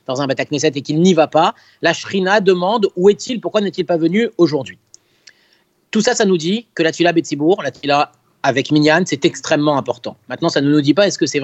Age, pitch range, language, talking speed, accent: 30-49, 145-190 Hz, French, 230 wpm, French